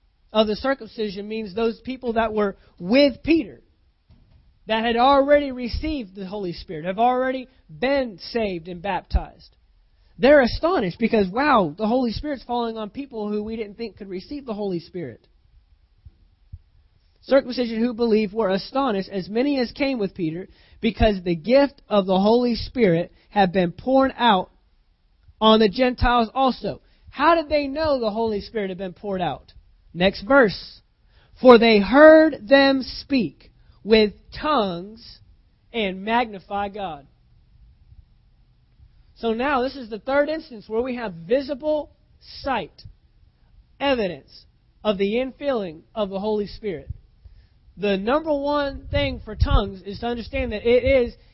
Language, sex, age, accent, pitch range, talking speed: English, male, 20-39, American, 195-255 Hz, 145 wpm